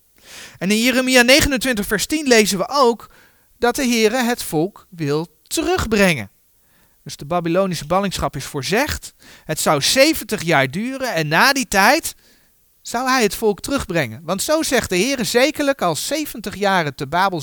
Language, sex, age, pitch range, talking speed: Dutch, male, 40-59, 140-215 Hz, 160 wpm